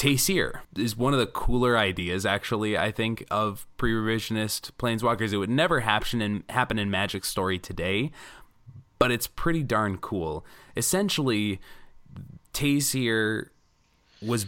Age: 20-39